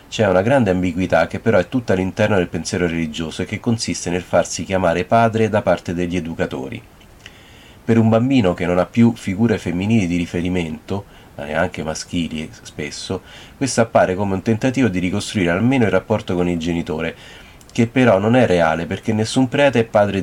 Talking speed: 180 wpm